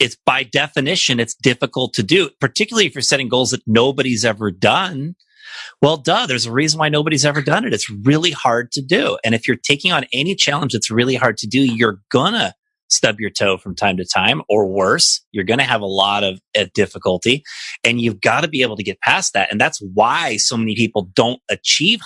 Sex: male